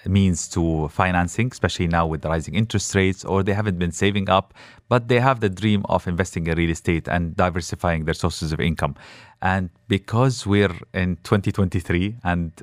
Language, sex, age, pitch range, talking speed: English, male, 30-49, 90-105 Hz, 180 wpm